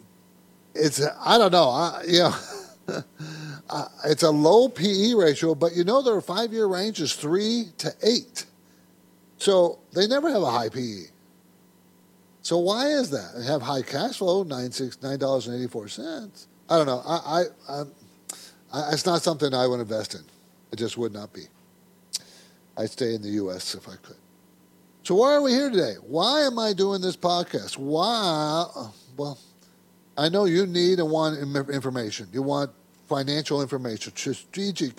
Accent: American